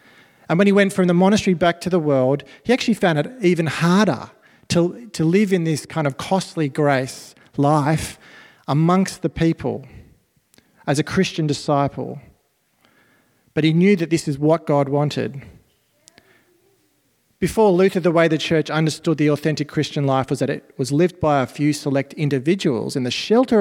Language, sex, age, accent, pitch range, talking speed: English, male, 40-59, Australian, 140-180 Hz, 170 wpm